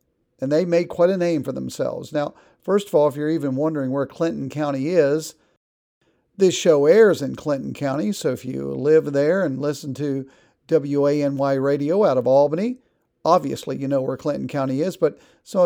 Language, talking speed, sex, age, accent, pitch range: English, 185 wpm, male, 50-69, American, 140-175 Hz